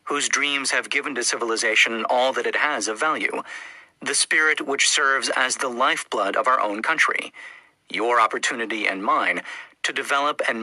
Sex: male